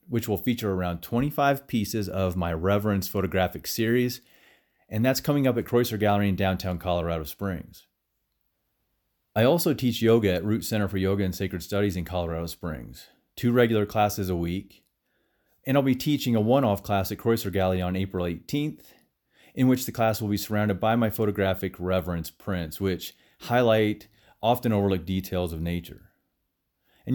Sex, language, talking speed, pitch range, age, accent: male, English, 165 wpm, 95-125 Hz, 30-49, American